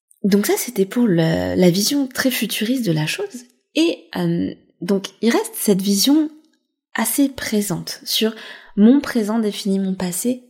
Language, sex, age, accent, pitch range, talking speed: French, female, 20-39, French, 180-245 Hz, 150 wpm